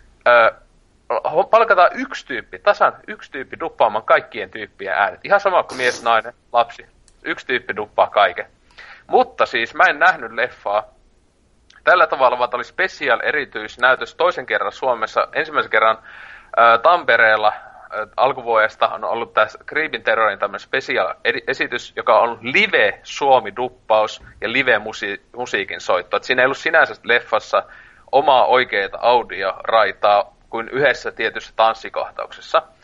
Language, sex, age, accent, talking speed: Finnish, male, 30-49, native, 125 wpm